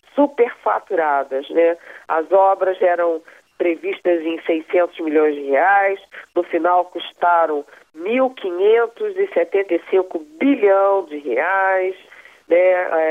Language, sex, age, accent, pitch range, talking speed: Portuguese, female, 40-59, Brazilian, 155-195 Hz, 85 wpm